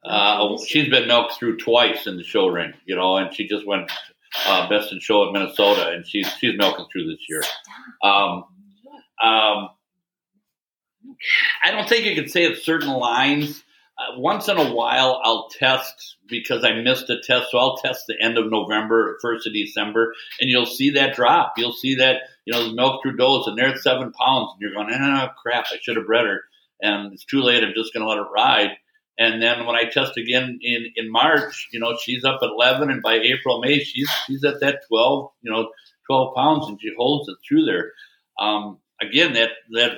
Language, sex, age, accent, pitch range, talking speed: English, male, 60-79, American, 115-140 Hz, 210 wpm